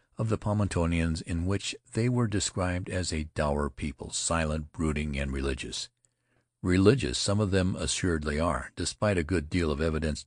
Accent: American